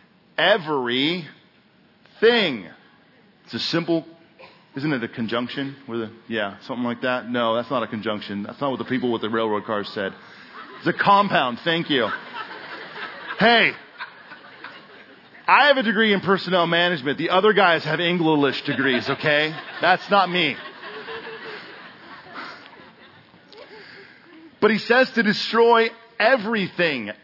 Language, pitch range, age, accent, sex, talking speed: English, 140-220 Hz, 40-59, American, male, 130 wpm